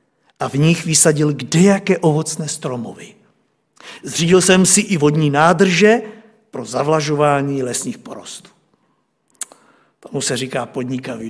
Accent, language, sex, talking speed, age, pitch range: native, Czech, male, 110 wpm, 60-79, 140-175 Hz